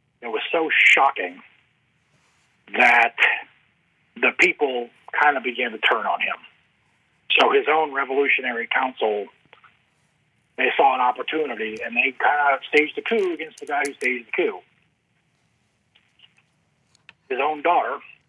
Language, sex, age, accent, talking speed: English, male, 40-59, American, 130 wpm